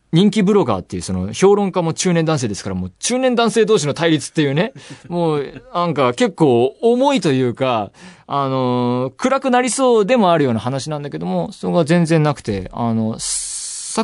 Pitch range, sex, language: 105-165 Hz, male, Japanese